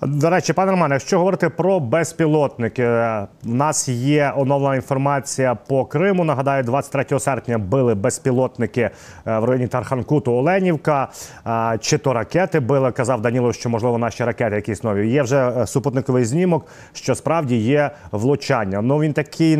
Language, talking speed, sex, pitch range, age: Ukrainian, 145 wpm, male, 120-150 Hz, 30-49